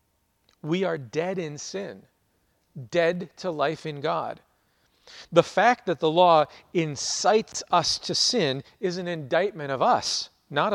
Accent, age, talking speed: American, 40-59, 140 wpm